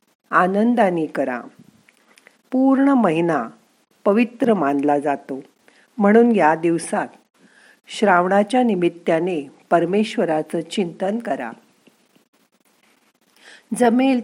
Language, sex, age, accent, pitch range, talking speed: Marathi, female, 50-69, native, 160-230 Hz, 65 wpm